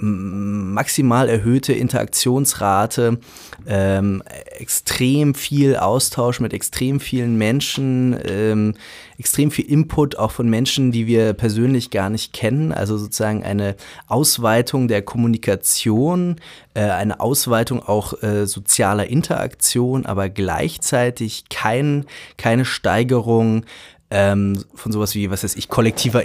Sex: male